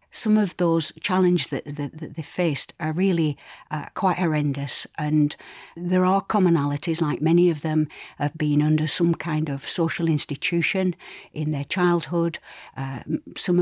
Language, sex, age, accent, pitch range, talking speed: English, female, 60-79, British, 150-175 Hz, 155 wpm